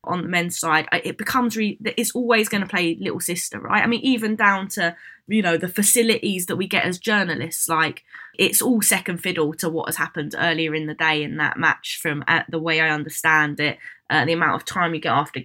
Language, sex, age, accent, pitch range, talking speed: English, female, 20-39, British, 165-205 Hz, 230 wpm